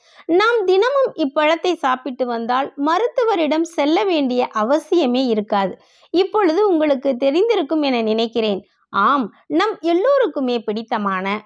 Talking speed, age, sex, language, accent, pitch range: 90 wpm, 20-39, female, Tamil, native, 240-330 Hz